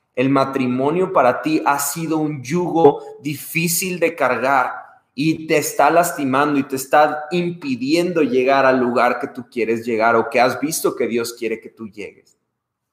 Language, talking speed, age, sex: Spanish, 165 wpm, 30-49, male